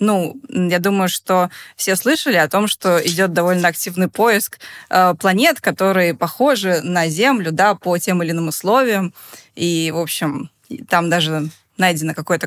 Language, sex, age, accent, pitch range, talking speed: Russian, female, 20-39, native, 170-200 Hz, 150 wpm